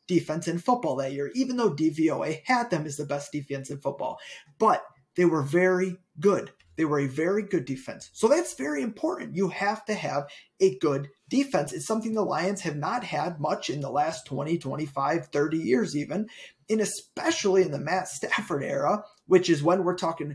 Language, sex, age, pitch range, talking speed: English, male, 30-49, 145-205 Hz, 195 wpm